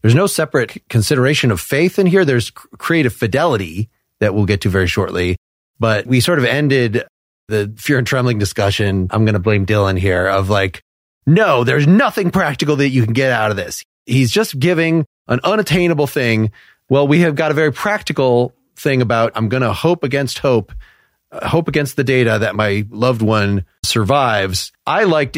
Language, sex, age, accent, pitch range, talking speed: English, male, 30-49, American, 110-145 Hz, 185 wpm